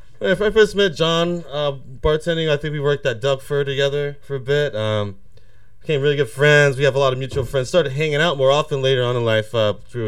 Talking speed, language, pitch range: 240 wpm, English, 105-145 Hz